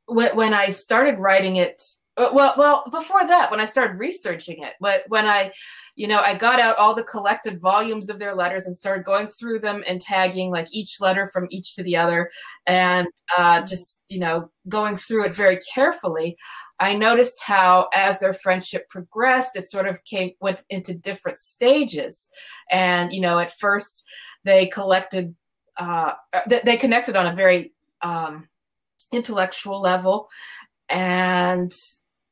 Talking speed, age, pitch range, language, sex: 160 wpm, 20-39, 180-210 Hz, English, female